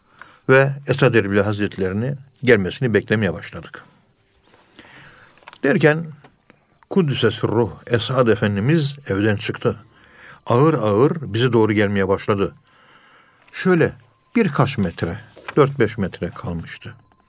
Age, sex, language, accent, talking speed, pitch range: 60-79, male, Turkish, native, 95 wpm, 105-140 Hz